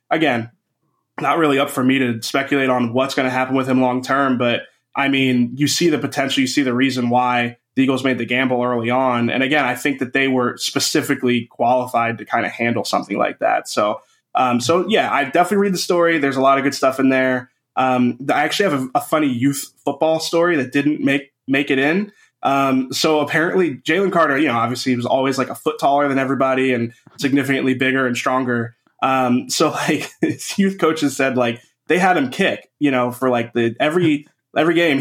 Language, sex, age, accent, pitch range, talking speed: English, male, 20-39, American, 125-150 Hz, 220 wpm